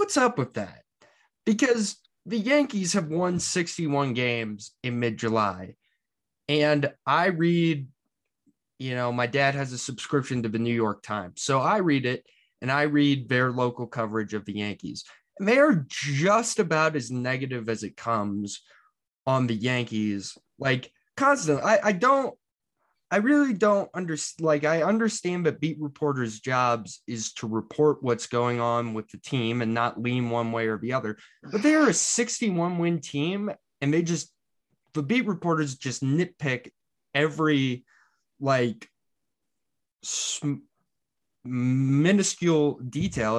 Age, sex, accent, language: 20-39, male, American, English